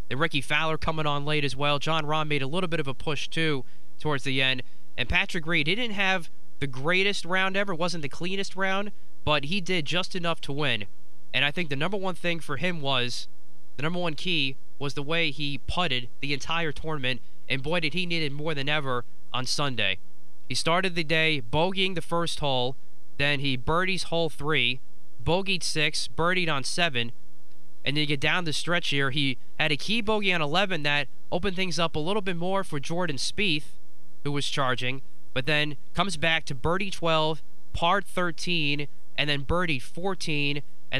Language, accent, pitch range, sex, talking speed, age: English, American, 135-170 Hz, male, 200 wpm, 20-39